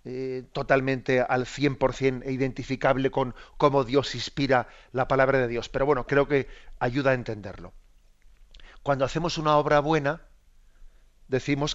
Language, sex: Spanish, male